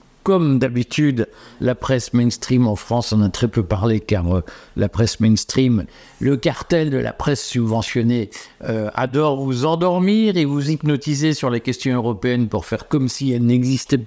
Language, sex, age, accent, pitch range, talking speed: French, male, 50-69, French, 110-140 Hz, 170 wpm